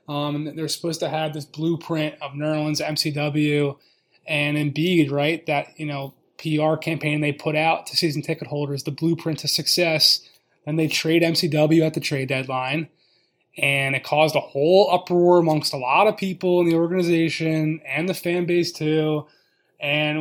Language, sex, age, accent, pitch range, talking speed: English, male, 20-39, American, 150-175 Hz, 170 wpm